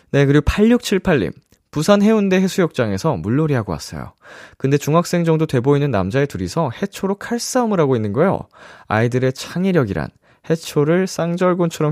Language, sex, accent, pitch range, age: Korean, male, native, 110-170 Hz, 20-39